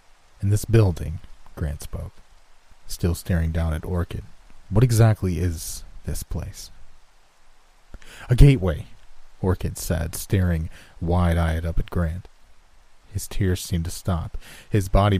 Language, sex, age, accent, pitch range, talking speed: English, male, 30-49, American, 85-100 Hz, 120 wpm